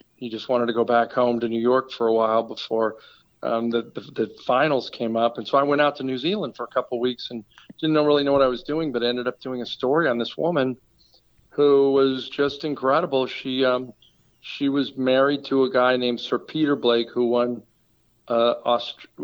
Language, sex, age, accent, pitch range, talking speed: English, male, 50-69, American, 120-135 Hz, 225 wpm